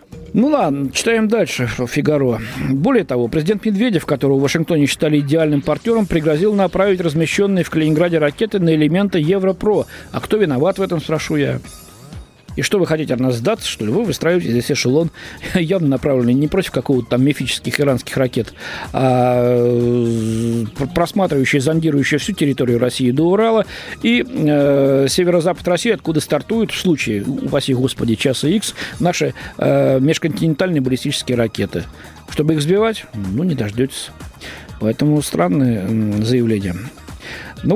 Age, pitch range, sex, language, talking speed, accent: 50-69, 130-175 Hz, male, Russian, 140 wpm, native